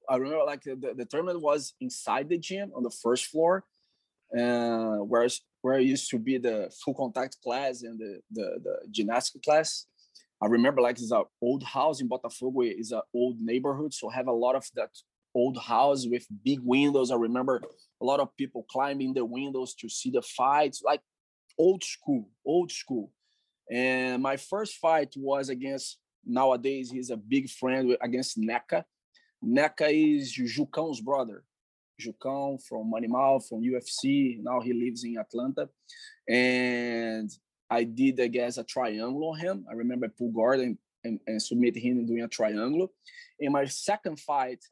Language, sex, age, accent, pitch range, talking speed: English, male, 20-39, Brazilian, 120-150 Hz, 170 wpm